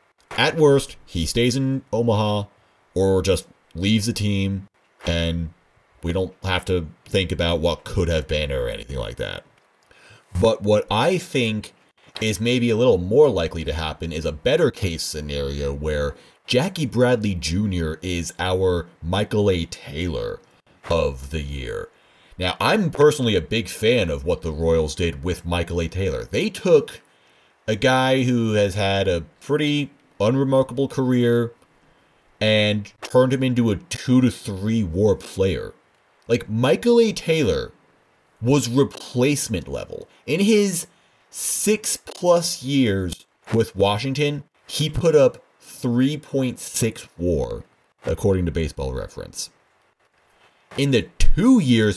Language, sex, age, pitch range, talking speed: English, male, 30-49, 90-135 Hz, 135 wpm